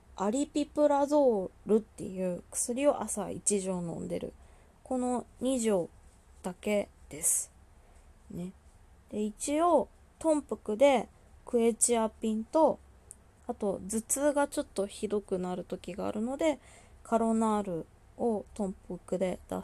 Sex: female